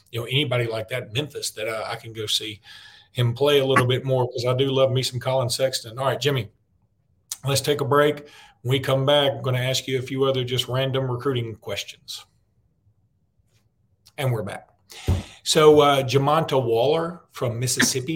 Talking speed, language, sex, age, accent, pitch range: 190 wpm, English, male, 40-59, American, 120-145 Hz